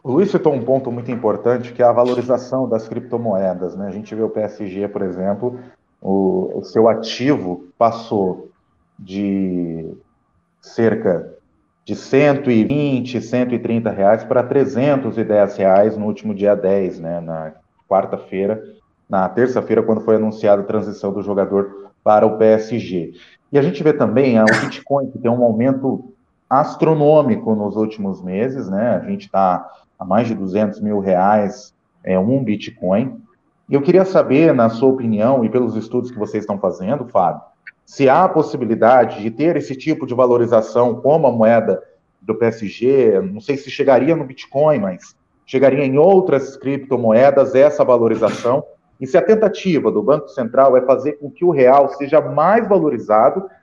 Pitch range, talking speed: 105-140 Hz, 155 wpm